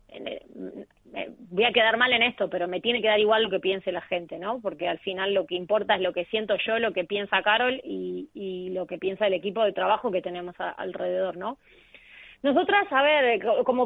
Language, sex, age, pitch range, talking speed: Spanish, female, 20-39, 210-245 Hz, 215 wpm